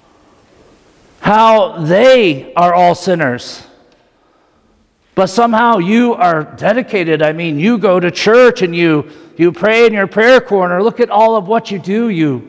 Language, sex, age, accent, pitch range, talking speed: English, male, 50-69, American, 175-225 Hz, 155 wpm